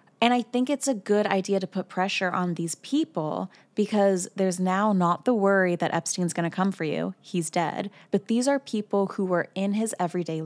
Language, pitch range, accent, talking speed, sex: English, 180-230 Hz, American, 210 wpm, female